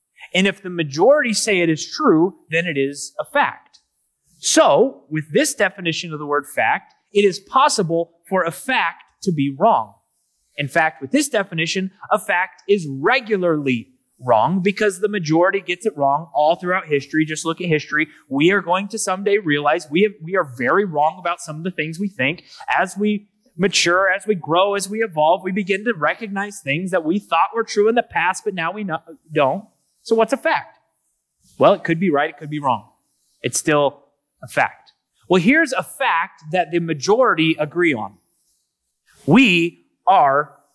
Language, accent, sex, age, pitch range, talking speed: English, American, male, 30-49, 160-210 Hz, 185 wpm